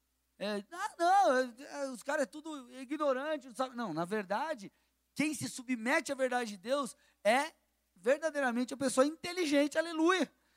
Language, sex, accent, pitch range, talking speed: Portuguese, male, Brazilian, 170-270 Hz, 155 wpm